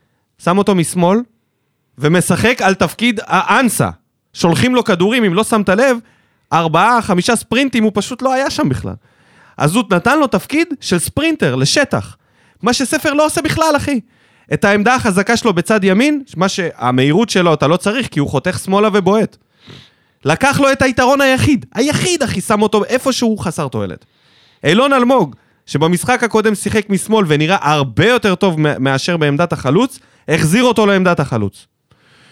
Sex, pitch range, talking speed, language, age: male, 150-240 Hz, 145 wpm, Hebrew, 20-39